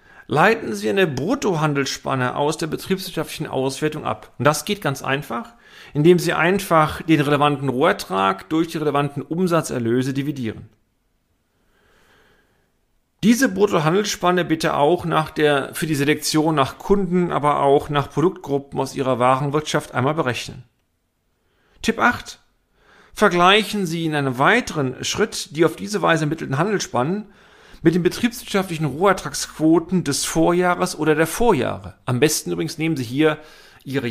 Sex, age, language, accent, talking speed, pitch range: male, 40-59, German, German, 130 wpm, 130-165 Hz